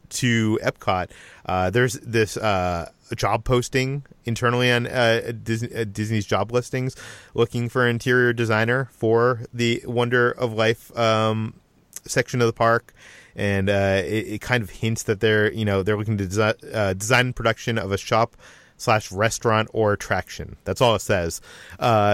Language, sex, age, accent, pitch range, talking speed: English, male, 30-49, American, 105-120 Hz, 165 wpm